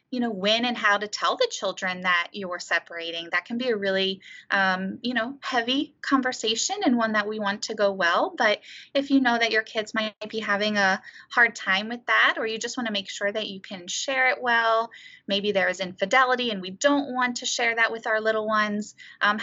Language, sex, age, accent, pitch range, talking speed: English, female, 20-39, American, 190-235 Hz, 230 wpm